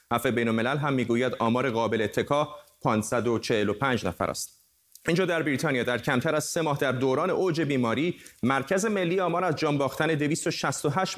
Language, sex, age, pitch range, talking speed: Persian, male, 30-49, 120-145 Hz, 155 wpm